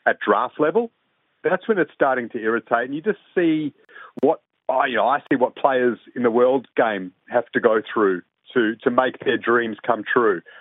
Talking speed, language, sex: 205 wpm, English, male